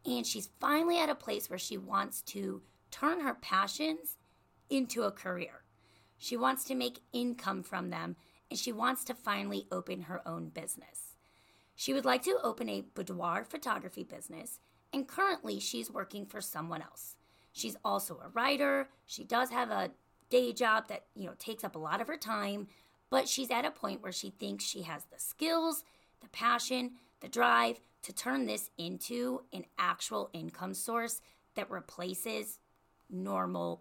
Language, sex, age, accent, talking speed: English, female, 30-49, American, 170 wpm